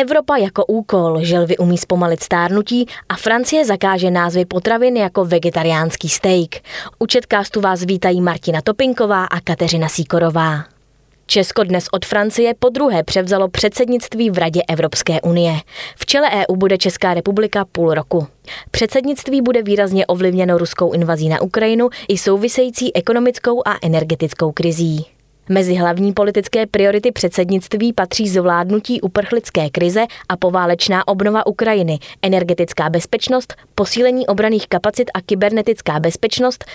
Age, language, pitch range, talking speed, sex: 20-39, Czech, 175-225 Hz, 125 wpm, female